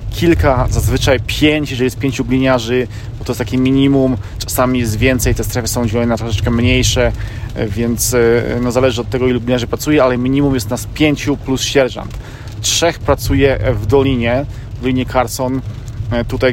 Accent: native